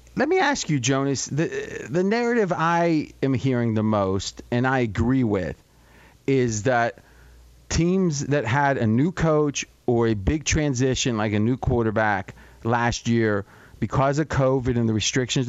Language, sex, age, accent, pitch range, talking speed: English, male, 40-59, American, 110-150 Hz, 160 wpm